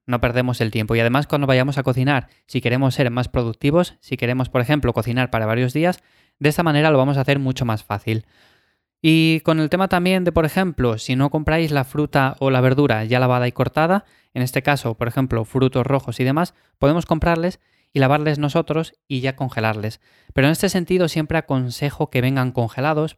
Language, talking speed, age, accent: Spanish, 205 wpm, 20-39, Spanish